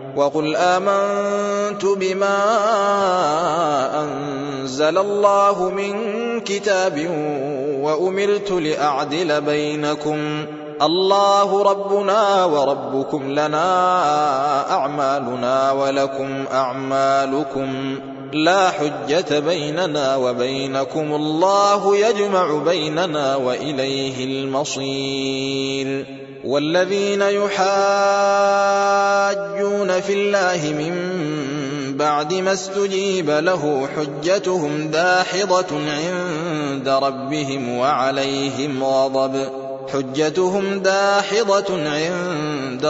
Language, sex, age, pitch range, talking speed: Arabic, male, 20-39, 135-190 Hz, 60 wpm